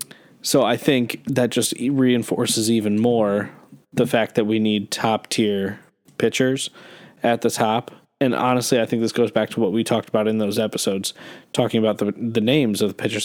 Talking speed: 190 wpm